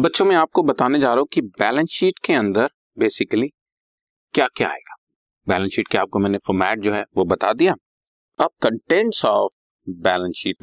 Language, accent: Hindi, native